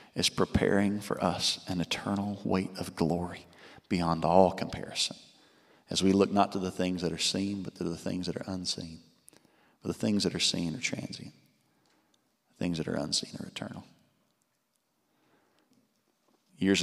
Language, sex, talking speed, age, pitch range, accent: English, male, 160 wpm, 40-59, 85-100 Hz, American